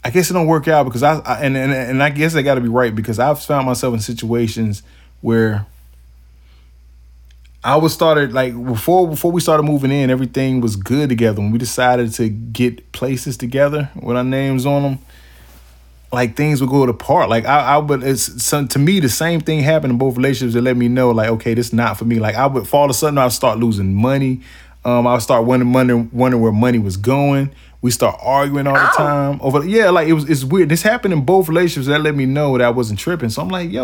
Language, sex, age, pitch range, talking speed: English, male, 20-39, 115-150 Hz, 235 wpm